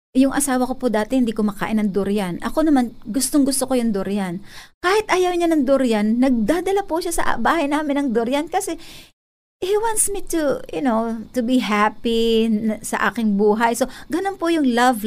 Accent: native